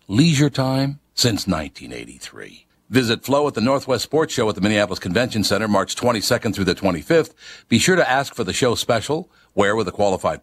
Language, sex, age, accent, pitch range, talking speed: English, male, 60-79, American, 100-130 Hz, 190 wpm